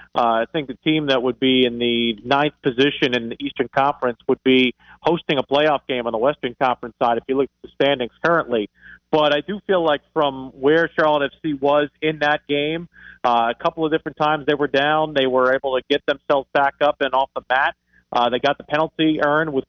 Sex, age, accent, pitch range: male, 40-59, American, 130-160 Hz